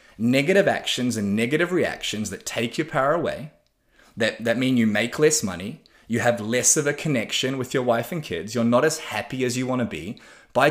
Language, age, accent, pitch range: English, 20-39, Australian, 115-135 Hz